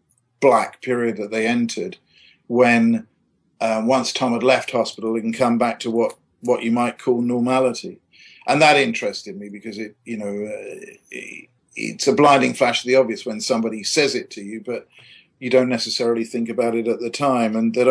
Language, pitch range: English, 115-140 Hz